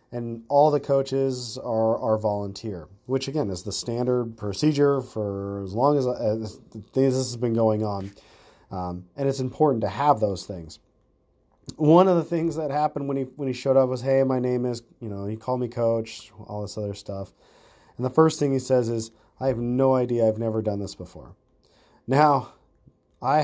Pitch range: 110-135 Hz